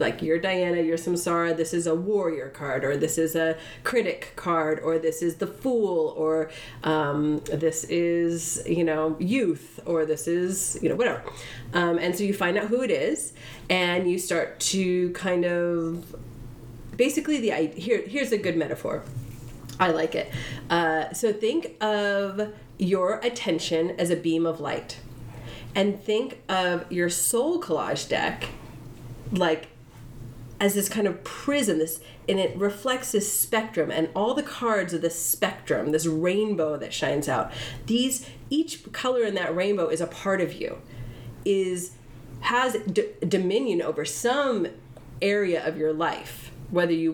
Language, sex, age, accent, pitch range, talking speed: English, female, 30-49, American, 150-200 Hz, 160 wpm